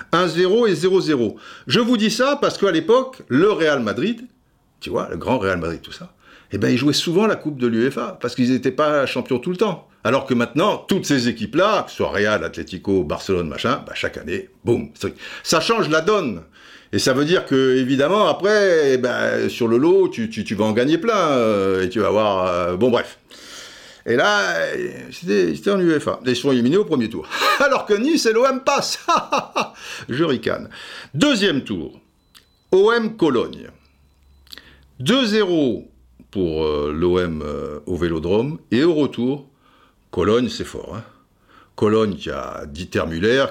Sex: male